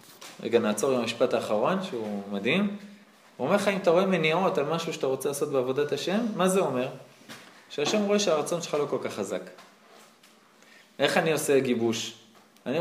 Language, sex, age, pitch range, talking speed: Hebrew, male, 20-39, 155-215 Hz, 175 wpm